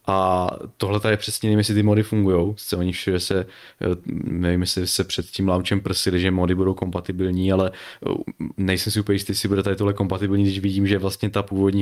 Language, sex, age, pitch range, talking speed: Czech, male, 20-39, 95-105 Hz, 190 wpm